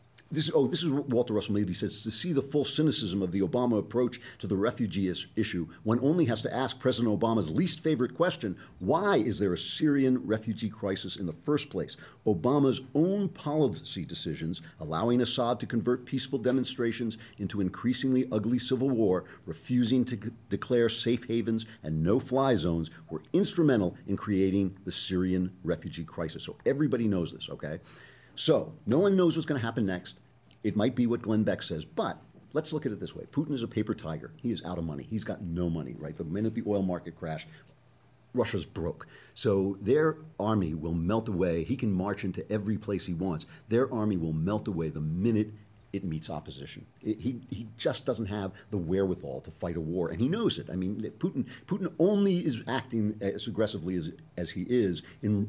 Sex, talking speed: male, 195 wpm